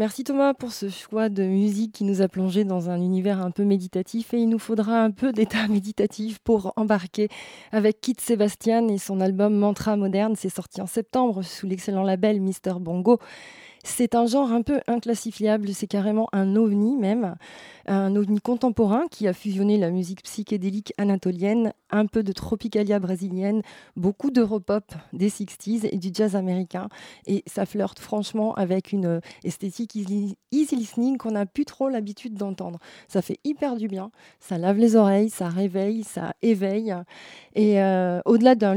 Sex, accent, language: female, French, French